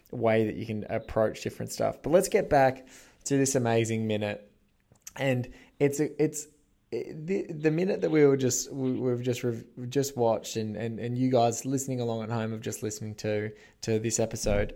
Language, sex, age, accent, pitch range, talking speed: English, male, 20-39, Australian, 110-130 Hz, 195 wpm